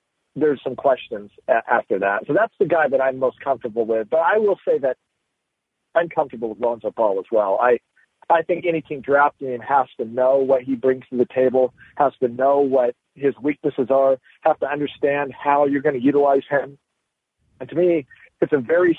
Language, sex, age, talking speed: English, male, 40-59, 205 wpm